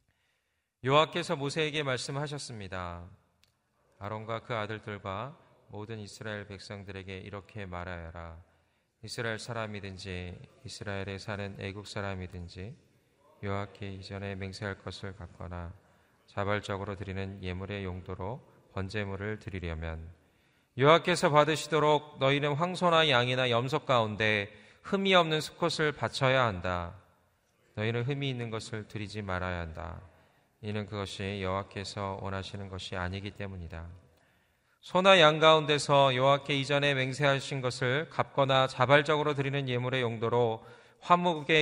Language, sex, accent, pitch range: Korean, male, native, 95-130 Hz